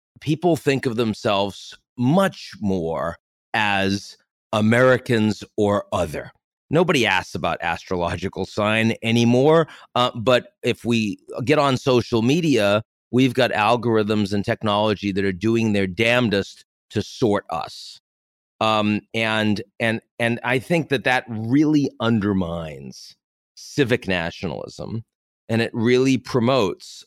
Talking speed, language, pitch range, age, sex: 120 wpm, English, 100-120 Hz, 30-49, male